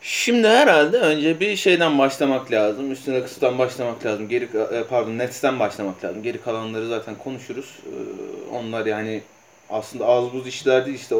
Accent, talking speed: native, 155 wpm